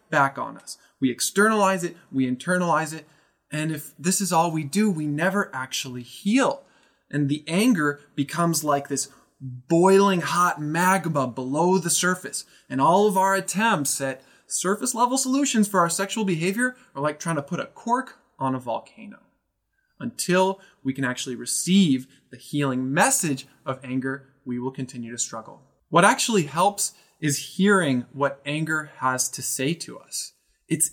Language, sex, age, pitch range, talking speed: English, male, 20-39, 130-180 Hz, 160 wpm